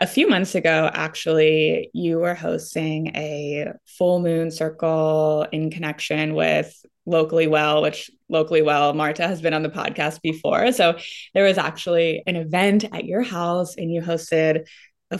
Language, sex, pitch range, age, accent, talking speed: English, female, 160-210 Hz, 20-39, American, 160 wpm